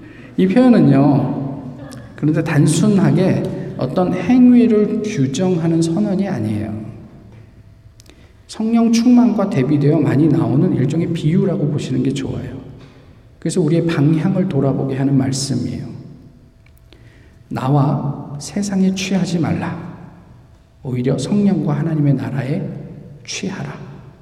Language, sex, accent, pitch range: Korean, male, native, 135-195 Hz